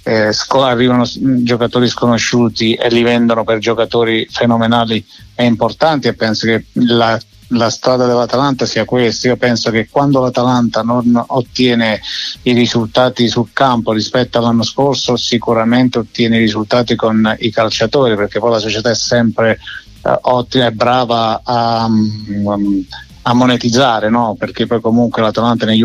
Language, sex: Italian, male